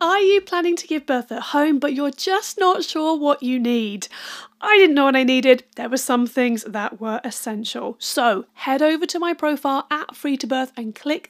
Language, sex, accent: English, female, British